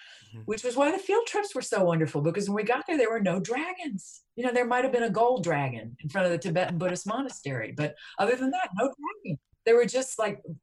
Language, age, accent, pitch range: English, 50-69, American, 150-215 Hz